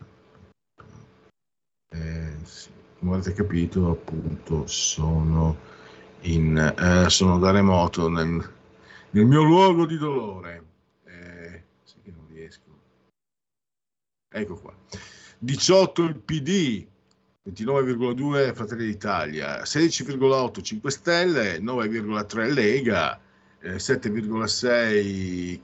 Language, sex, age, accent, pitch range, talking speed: Italian, male, 50-69, native, 100-160 Hz, 80 wpm